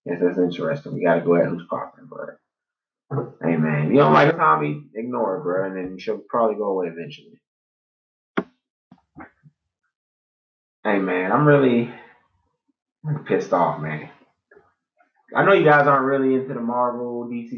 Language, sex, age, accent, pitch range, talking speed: English, male, 20-39, American, 110-175 Hz, 145 wpm